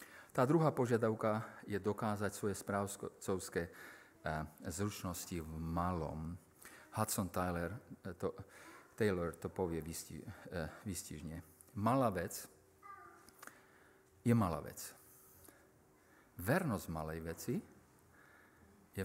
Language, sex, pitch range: Slovak, male, 90-125 Hz